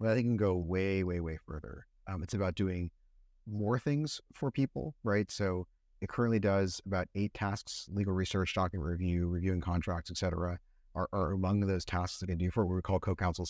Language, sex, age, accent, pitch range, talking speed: English, male, 30-49, American, 85-100 Hz, 195 wpm